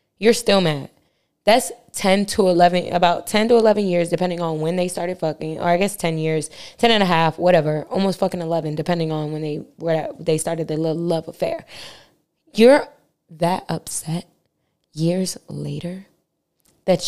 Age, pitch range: 10-29, 165-205 Hz